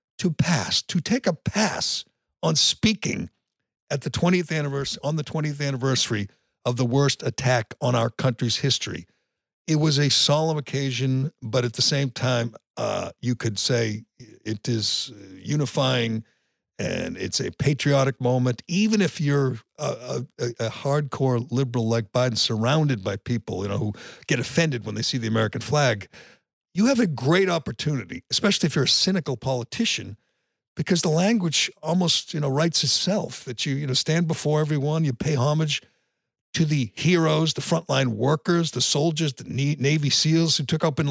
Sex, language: male, English